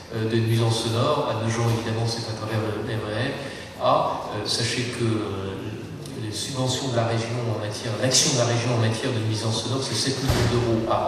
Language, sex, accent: French, male, French